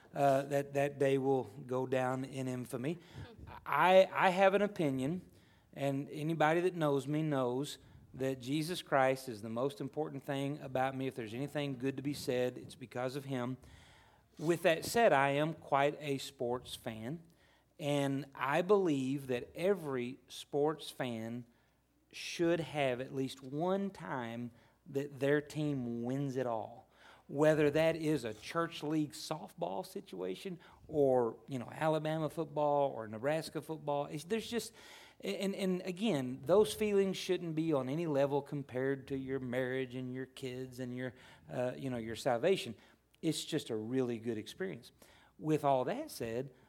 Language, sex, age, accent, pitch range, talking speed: English, male, 40-59, American, 130-155 Hz, 155 wpm